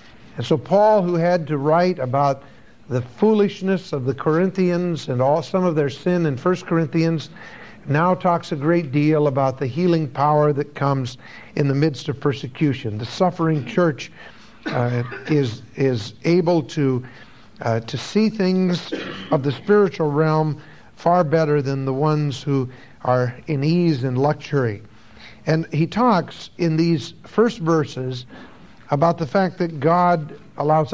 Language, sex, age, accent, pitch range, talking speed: English, male, 60-79, American, 140-180 Hz, 150 wpm